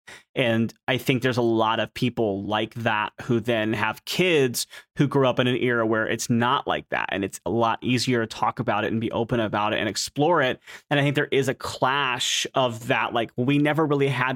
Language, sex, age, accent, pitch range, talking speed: English, male, 30-49, American, 115-140 Hz, 235 wpm